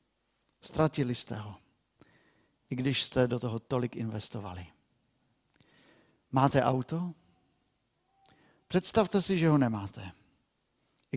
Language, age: Czech, 50-69